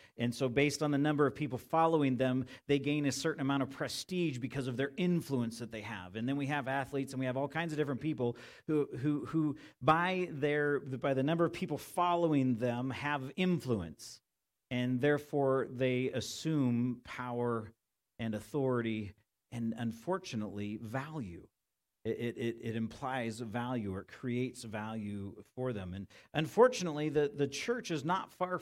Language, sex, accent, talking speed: English, male, American, 165 wpm